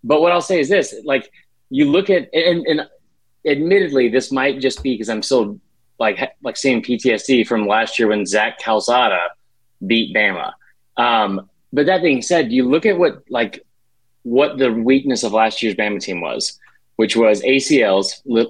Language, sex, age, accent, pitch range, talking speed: English, male, 30-49, American, 110-140 Hz, 185 wpm